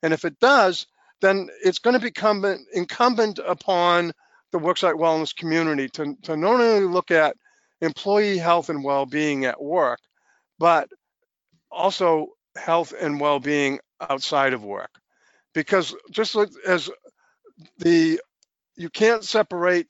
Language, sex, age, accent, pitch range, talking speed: English, male, 50-69, American, 145-185 Hz, 125 wpm